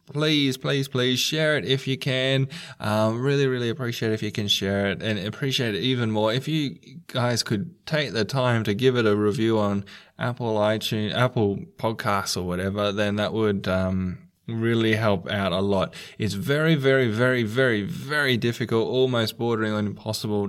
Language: English